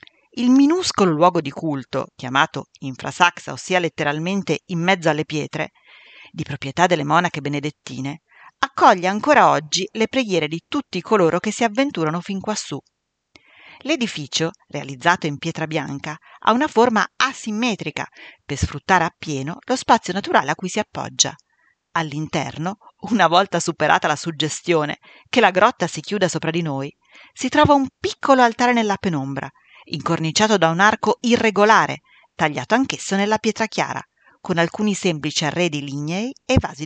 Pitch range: 155-220 Hz